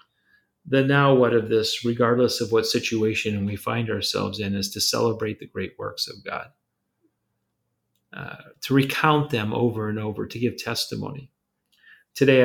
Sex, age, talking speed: male, 40-59, 155 wpm